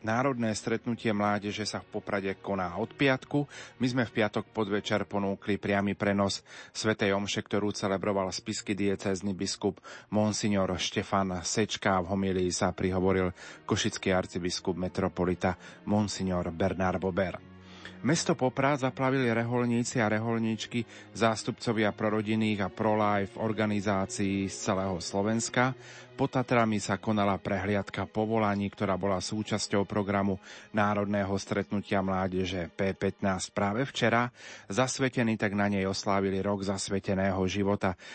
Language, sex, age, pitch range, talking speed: Slovak, male, 30-49, 95-110 Hz, 120 wpm